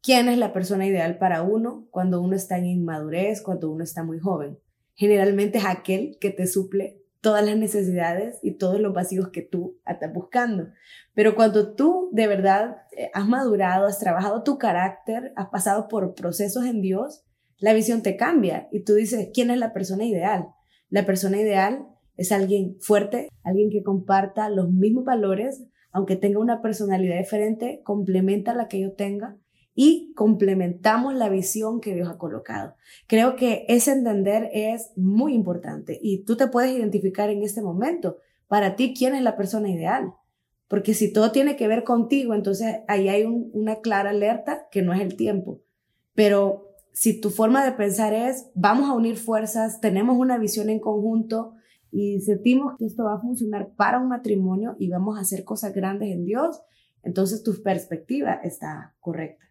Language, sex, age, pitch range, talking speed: Spanish, female, 20-39, 195-225 Hz, 175 wpm